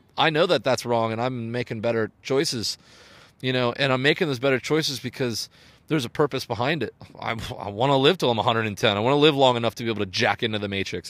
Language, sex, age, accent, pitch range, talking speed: English, male, 30-49, American, 120-150 Hz, 250 wpm